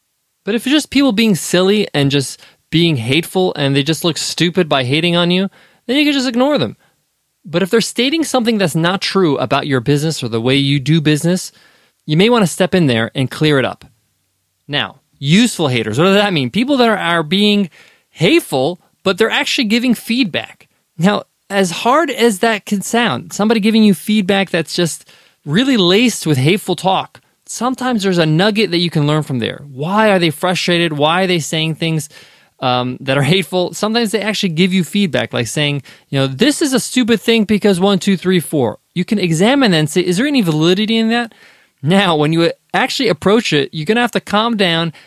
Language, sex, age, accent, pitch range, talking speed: English, male, 20-39, American, 150-215 Hz, 210 wpm